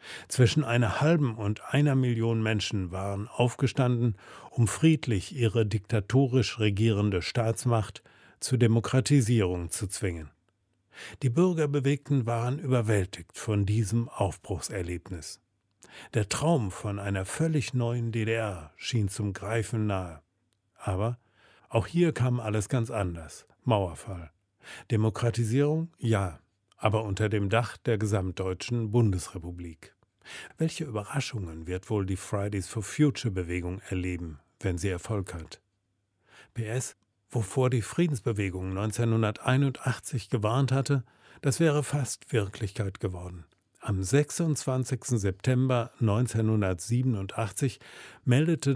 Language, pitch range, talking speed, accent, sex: German, 100-125 Hz, 100 wpm, German, male